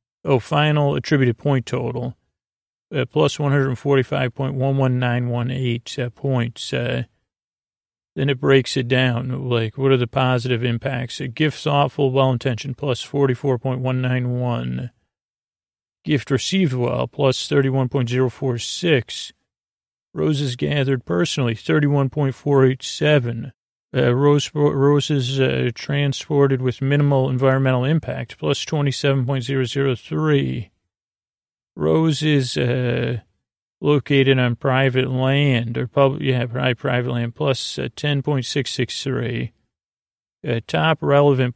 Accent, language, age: American, English, 40-59